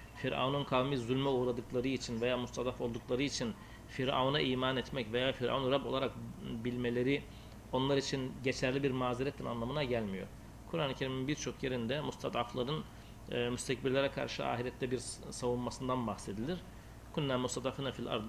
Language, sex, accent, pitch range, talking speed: Turkish, male, native, 115-140 Hz, 130 wpm